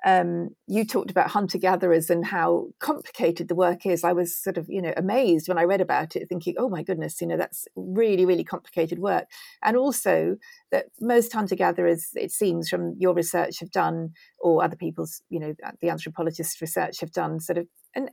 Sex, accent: female, British